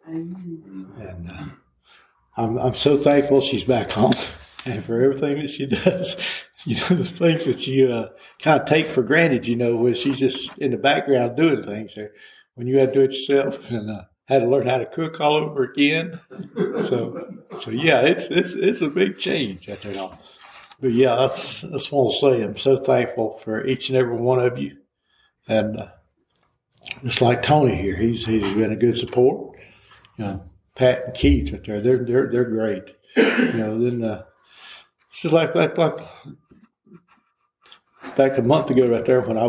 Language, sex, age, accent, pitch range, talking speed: English, male, 60-79, American, 110-145 Hz, 190 wpm